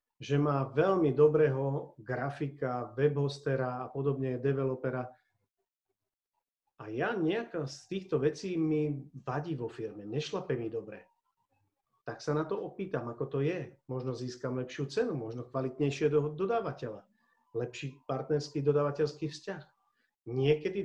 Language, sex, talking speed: Slovak, male, 120 wpm